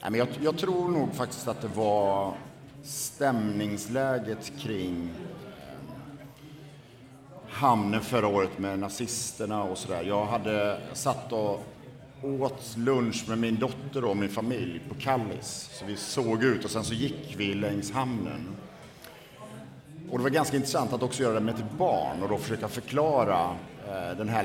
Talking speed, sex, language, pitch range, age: 140 wpm, male, Swedish, 110-140 Hz, 50-69